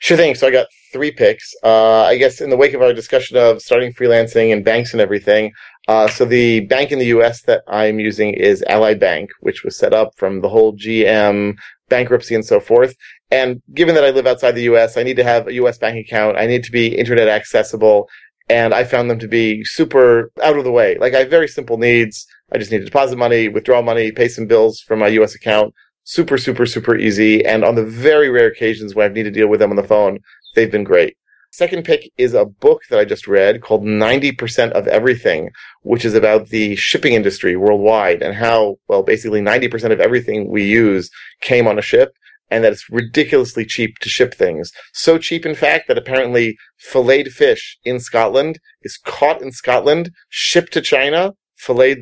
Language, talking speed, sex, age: English, 210 wpm, male, 30-49